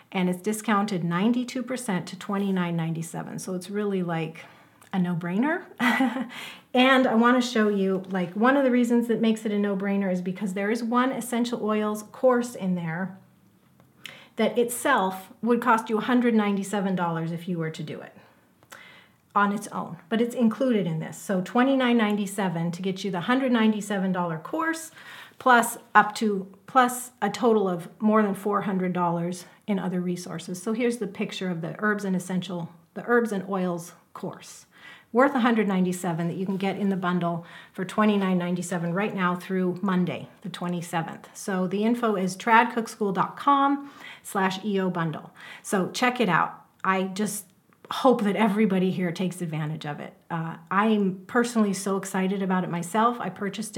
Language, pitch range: English, 180-225 Hz